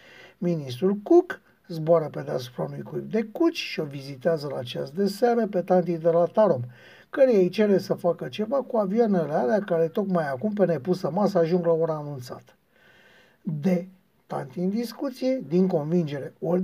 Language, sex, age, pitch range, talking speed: Romanian, male, 60-79, 165-220 Hz, 170 wpm